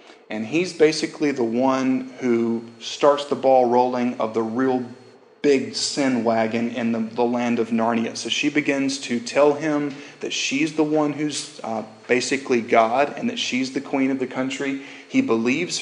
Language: English